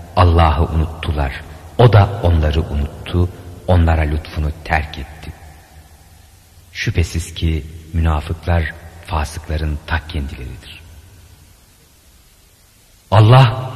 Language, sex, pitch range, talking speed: Turkish, male, 85-105 Hz, 75 wpm